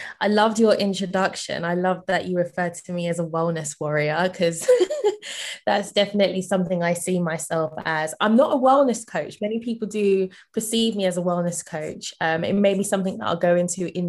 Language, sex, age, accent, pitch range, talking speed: English, female, 20-39, British, 170-195 Hz, 200 wpm